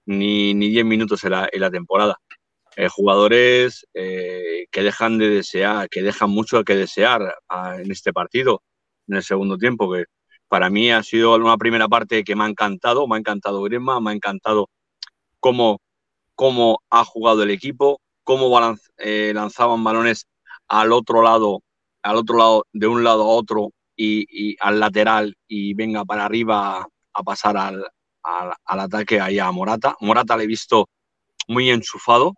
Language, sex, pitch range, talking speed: Spanish, male, 100-115 Hz, 170 wpm